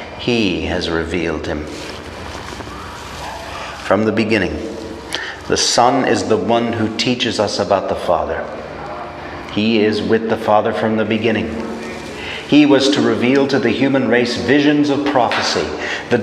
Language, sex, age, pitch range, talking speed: English, male, 40-59, 95-120 Hz, 140 wpm